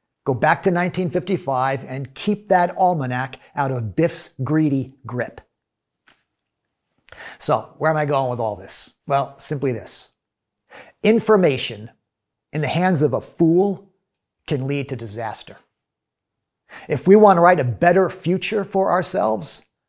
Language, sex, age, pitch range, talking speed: English, male, 50-69, 130-175 Hz, 135 wpm